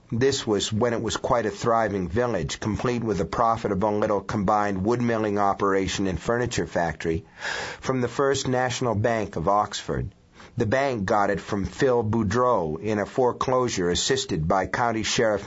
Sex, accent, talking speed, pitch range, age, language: male, American, 170 wpm, 95-125 Hz, 50-69, English